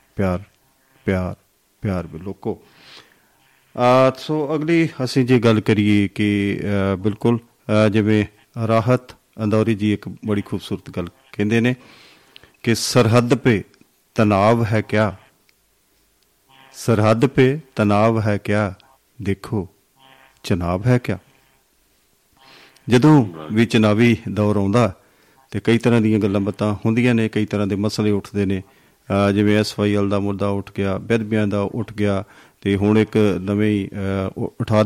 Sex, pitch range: male, 100-115 Hz